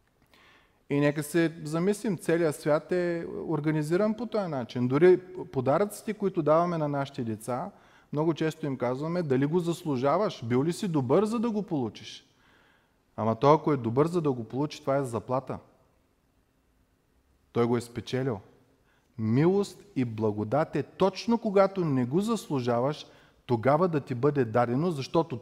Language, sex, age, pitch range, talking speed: Bulgarian, male, 30-49, 125-175 Hz, 150 wpm